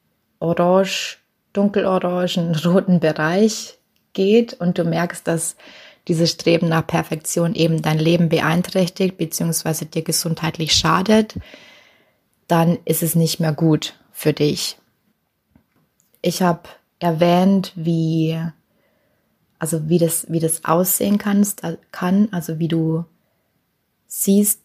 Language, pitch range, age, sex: German, 160-180 Hz, 20-39, female